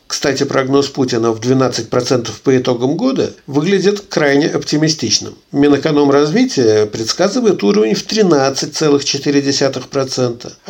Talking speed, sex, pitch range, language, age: 90 wpm, male, 120-170 Hz, Russian, 50-69